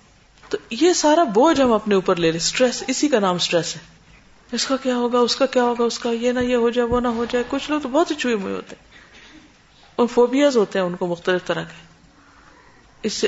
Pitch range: 180-245 Hz